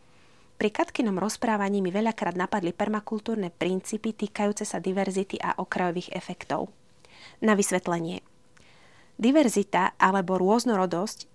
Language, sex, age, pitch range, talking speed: Slovak, female, 30-49, 185-220 Hz, 100 wpm